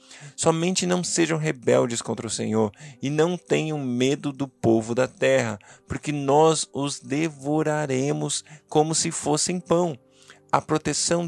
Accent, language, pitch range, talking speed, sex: Brazilian, Portuguese, 120-150 Hz, 135 wpm, male